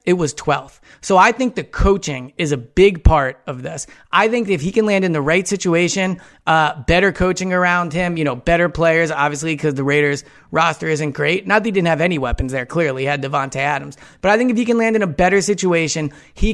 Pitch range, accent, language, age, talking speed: 155-195 Hz, American, English, 30-49, 235 wpm